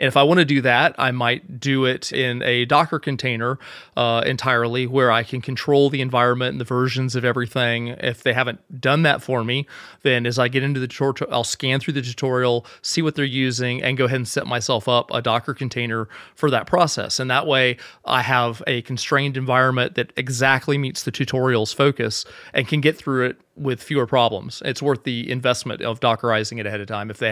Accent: American